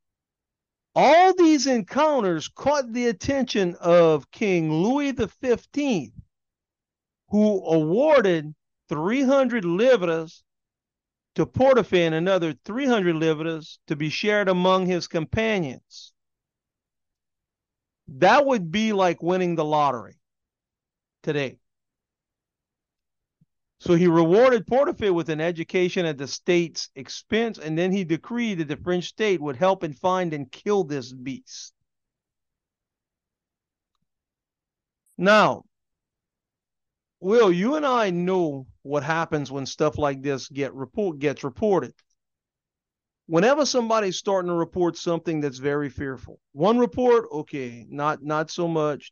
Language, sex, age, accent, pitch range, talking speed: English, male, 50-69, American, 145-210 Hz, 115 wpm